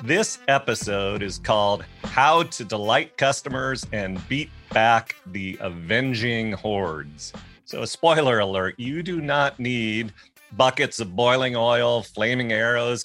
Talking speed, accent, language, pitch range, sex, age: 130 wpm, American, English, 105-125 Hz, male, 40-59